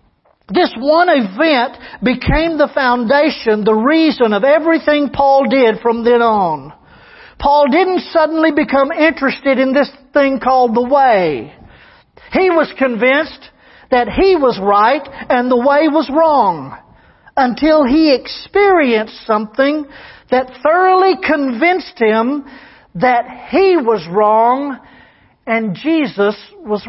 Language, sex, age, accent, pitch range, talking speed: English, male, 50-69, American, 245-310 Hz, 120 wpm